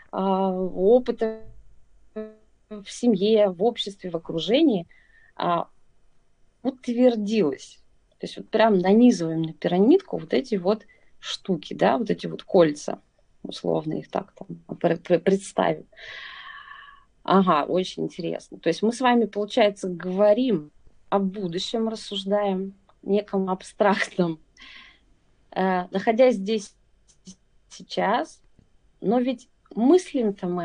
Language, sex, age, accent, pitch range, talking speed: Russian, female, 20-39, native, 180-225 Hz, 105 wpm